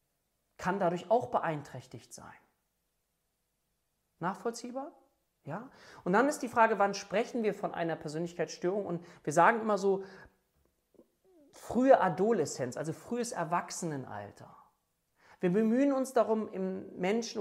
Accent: German